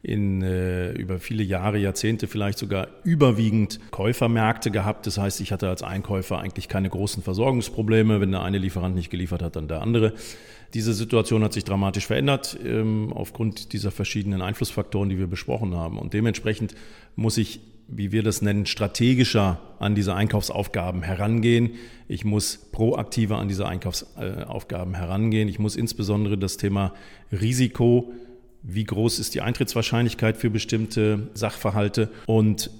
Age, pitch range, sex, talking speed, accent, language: 40-59, 100-115 Hz, male, 145 wpm, German, German